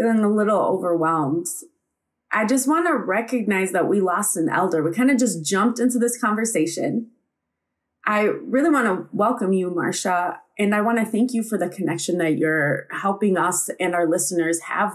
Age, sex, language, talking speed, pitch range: 20-39, female, English, 185 wpm, 180-250 Hz